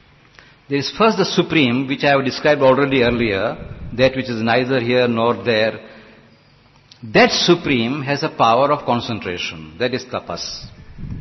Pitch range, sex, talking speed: 125-180 Hz, male, 150 wpm